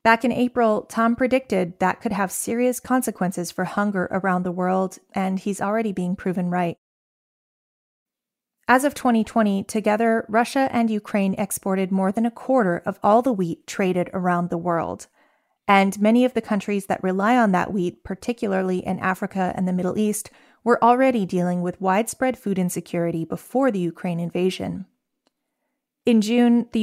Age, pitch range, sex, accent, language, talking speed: 30-49, 185-235 Hz, female, American, English, 160 wpm